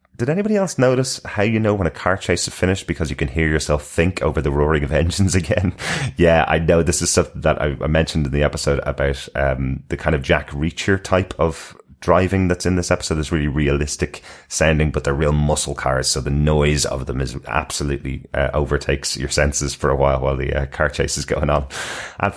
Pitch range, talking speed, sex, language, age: 70-90 Hz, 225 wpm, male, English, 30-49